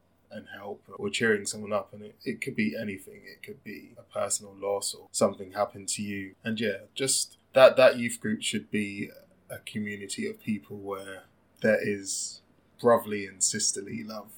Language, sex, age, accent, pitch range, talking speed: English, male, 10-29, British, 100-110 Hz, 180 wpm